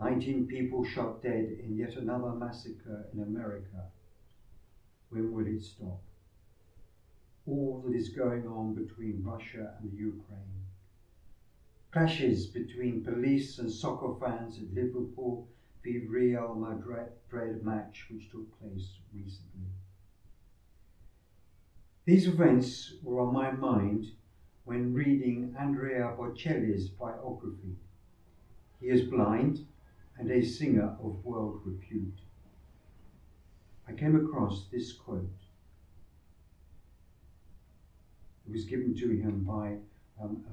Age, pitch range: 60-79, 95-125 Hz